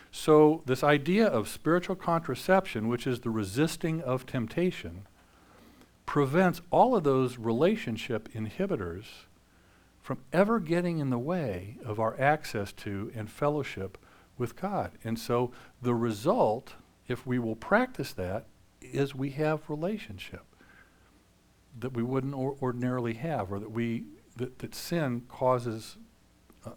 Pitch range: 110-160 Hz